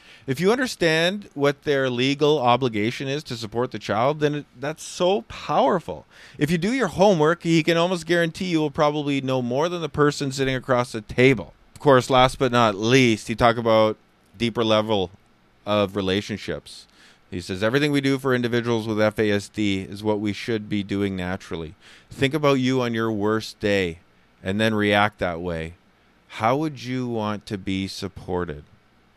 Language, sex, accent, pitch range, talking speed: English, male, American, 100-130 Hz, 175 wpm